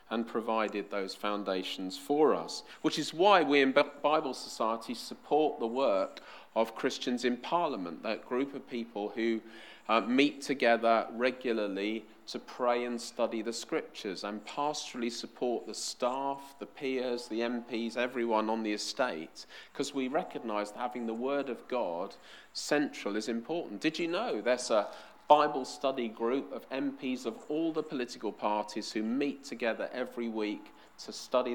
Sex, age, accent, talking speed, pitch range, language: male, 40-59, British, 155 wpm, 110-135 Hz, English